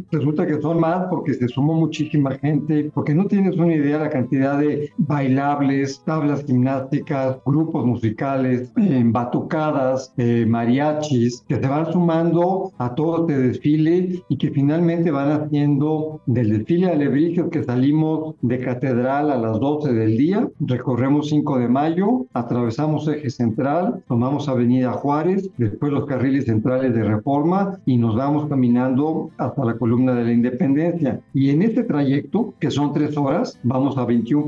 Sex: male